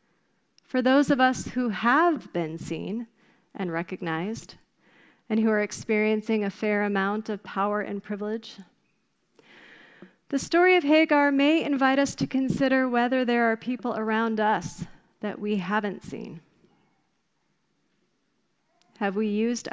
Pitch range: 190-230 Hz